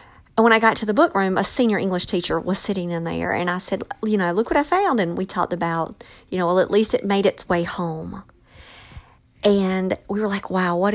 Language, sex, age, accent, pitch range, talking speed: English, female, 40-59, American, 175-225 Hz, 240 wpm